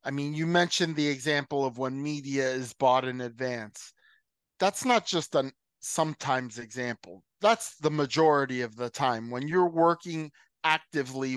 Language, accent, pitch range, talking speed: English, American, 130-165 Hz, 155 wpm